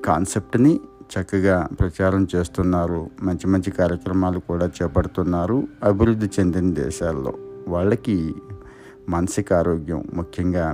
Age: 60-79